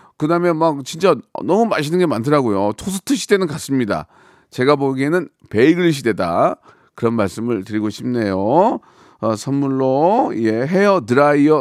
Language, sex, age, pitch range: Korean, male, 40-59, 110-155 Hz